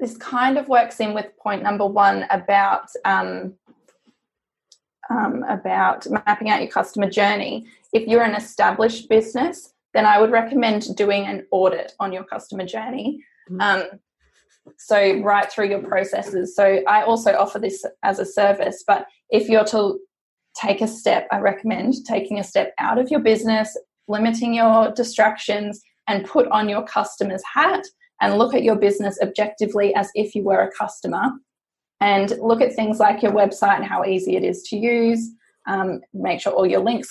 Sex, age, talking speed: female, 10-29, 165 wpm